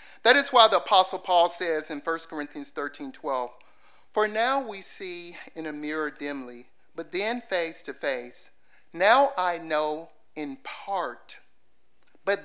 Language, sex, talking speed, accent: English, male, 150 wpm, American